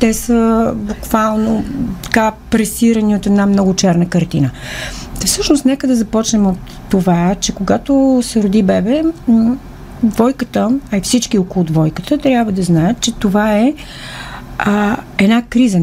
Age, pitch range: 40-59, 190-240 Hz